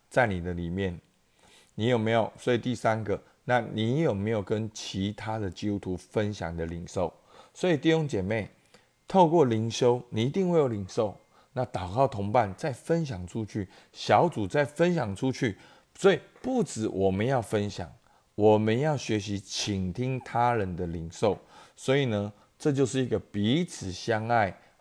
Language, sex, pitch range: Chinese, male, 100-135 Hz